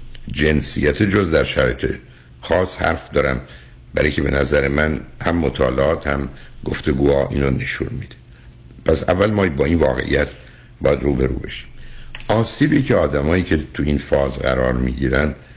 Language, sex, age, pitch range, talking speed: Persian, male, 60-79, 65-100 Hz, 145 wpm